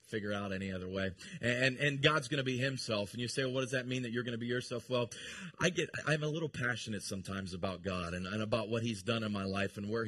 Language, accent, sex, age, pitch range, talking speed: English, American, male, 30-49, 120-175 Hz, 280 wpm